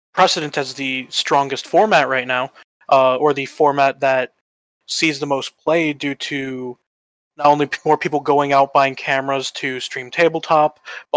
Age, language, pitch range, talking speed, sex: 20-39, English, 135-160 Hz, 160 wpm, male